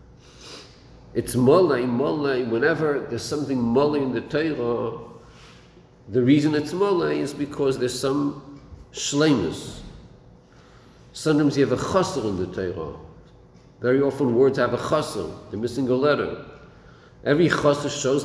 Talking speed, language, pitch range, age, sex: 130 wpm, English, 125-165 Hz, 50-69, male